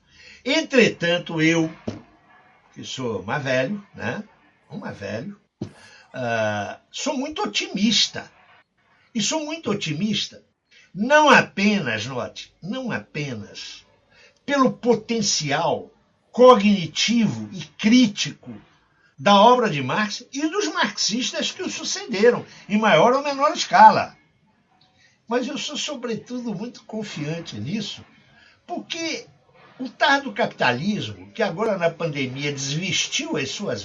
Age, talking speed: 60-79, 100 wpm